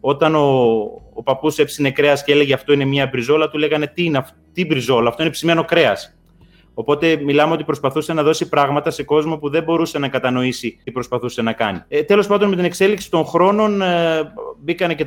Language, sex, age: Greek, male, 30-49